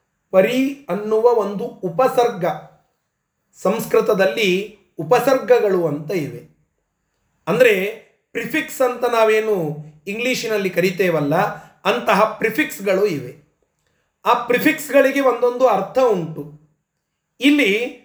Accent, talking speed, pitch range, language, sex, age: native, 75 wpm, 165-245 Hz, Kannada, male, 30-49